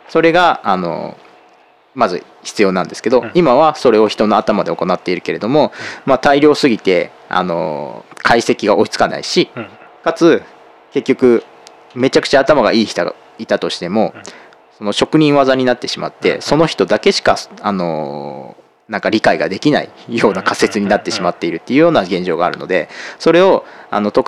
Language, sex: Japanese, male